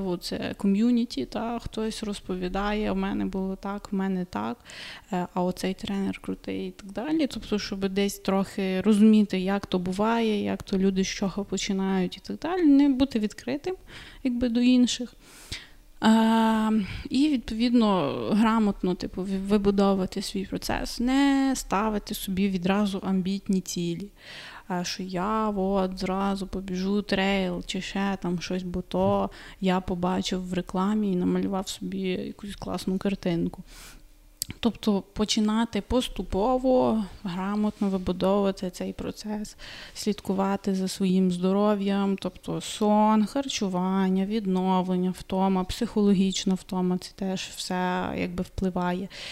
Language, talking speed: Ukrainian, 120 wpm